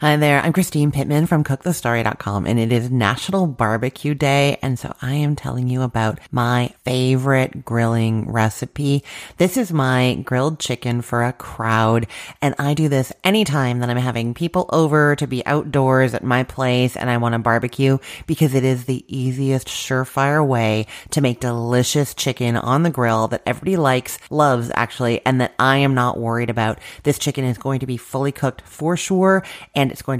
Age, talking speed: 30-49, 185 wpm